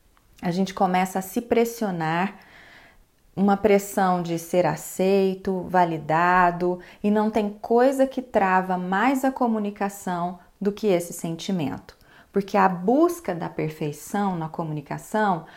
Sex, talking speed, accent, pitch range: female, 125 wpm, Brazilian, 180-230 Hz